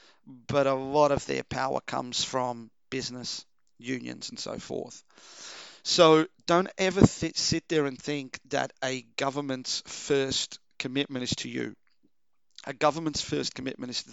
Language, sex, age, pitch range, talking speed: English, male, 40-59, 125-155 Hz, 145 wpm